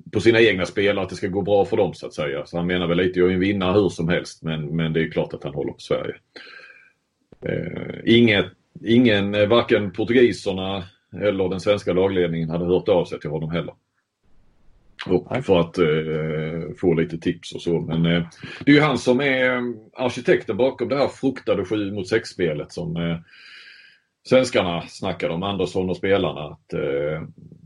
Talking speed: 190 wpm